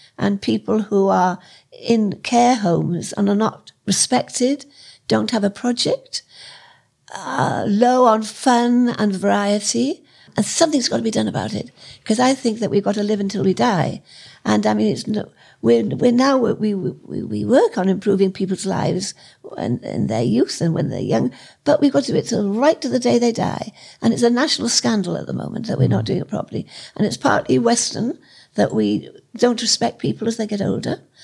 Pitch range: 195-250 Hz